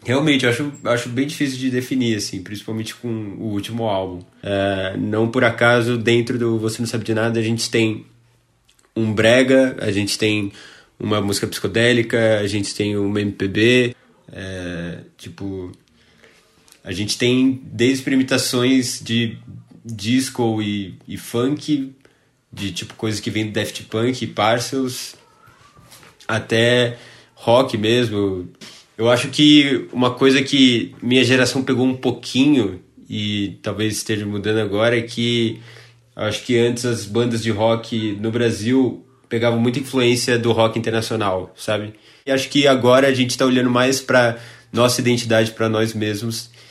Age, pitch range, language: 20-39, 105-125 Hz, Portuguese